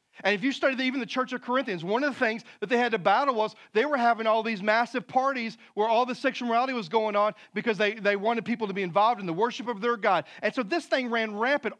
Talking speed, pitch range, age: 275 wpm, 210-265 Hz, 40-59